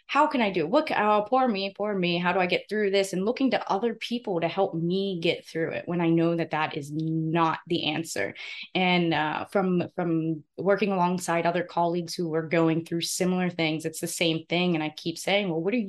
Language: English